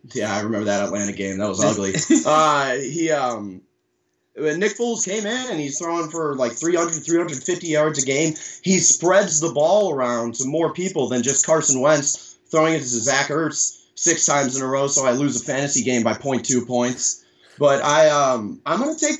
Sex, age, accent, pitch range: male, 20-39, American, 120-160 Hz